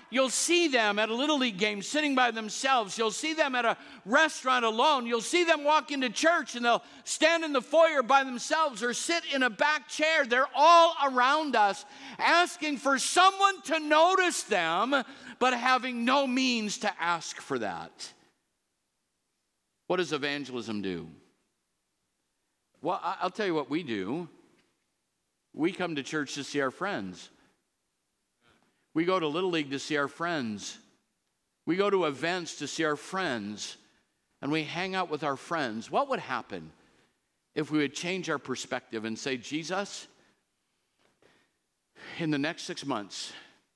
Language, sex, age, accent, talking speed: English, male, 50-69, American, 160 wpm